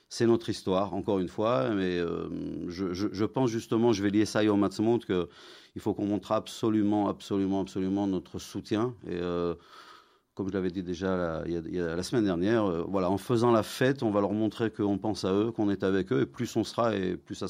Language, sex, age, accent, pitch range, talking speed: French, male, 40-59, French, 90-110 Hz, 235 wpm